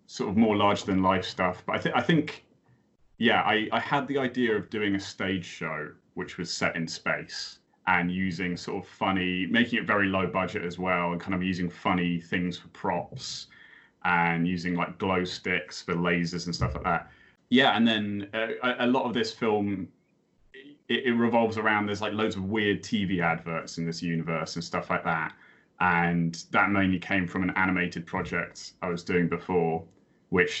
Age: 30-49